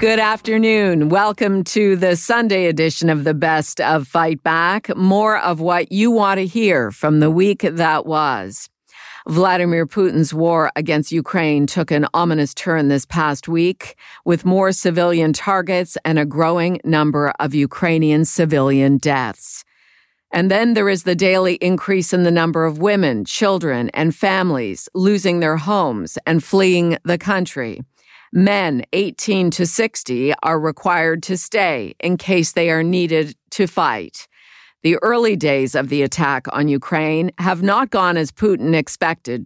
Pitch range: 155-190 Hz